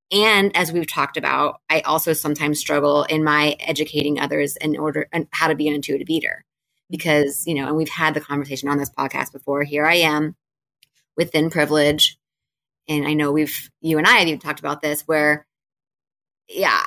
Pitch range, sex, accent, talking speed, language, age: 150-190 Hz, female, American, 190 wpm, English, 20-39